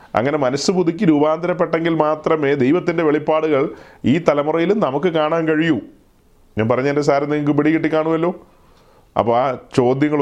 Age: 30-49